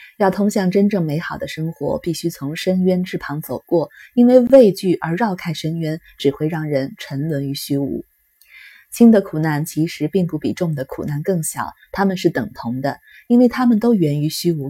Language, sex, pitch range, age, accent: Chinese, female, 155-200 Hz, 20-39, native